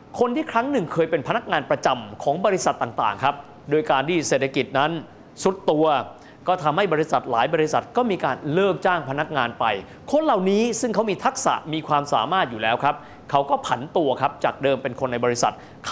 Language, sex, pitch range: Thai, male, 135-210 Hz